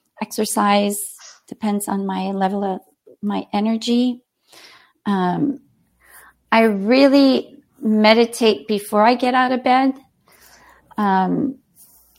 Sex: female